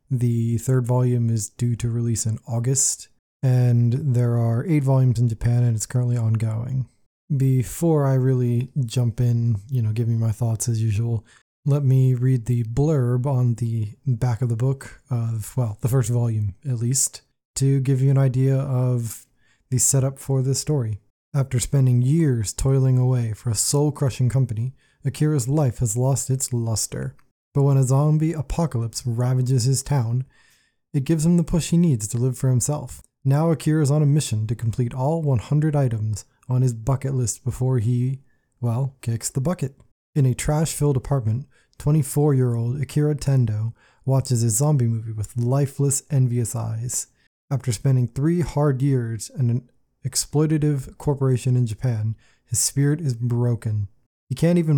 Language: English